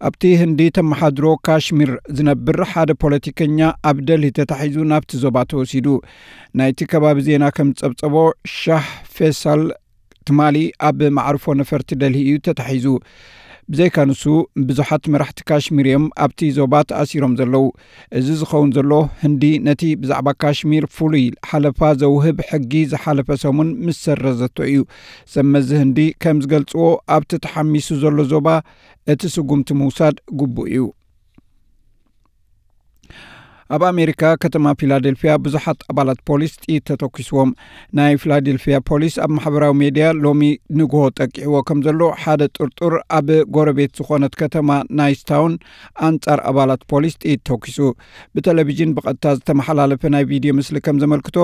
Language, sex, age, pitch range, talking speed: Amharic, male, 60-79, 140-155 Hz, 110 wpm